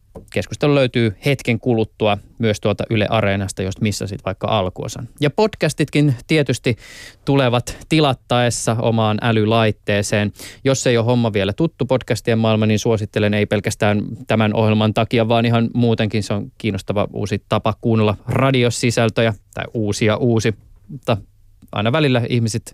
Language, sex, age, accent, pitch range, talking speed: Finnish, male, 20-39, native, 105-130 Hz, 135 wpm